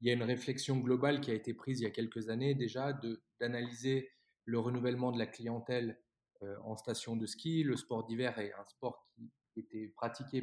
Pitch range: 115-135 Hz